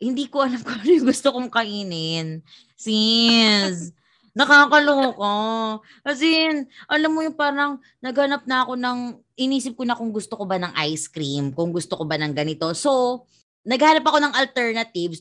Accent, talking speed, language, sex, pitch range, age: Filipino, 155 wpm, English, female, 170-235 Hz, 20-39